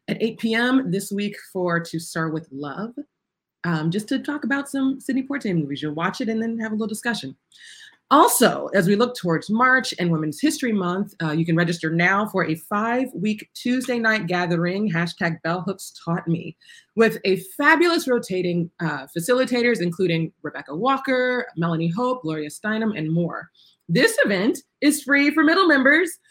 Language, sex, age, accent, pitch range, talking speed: English, female, 30-49, American, 165-225 Hz, 170 wpm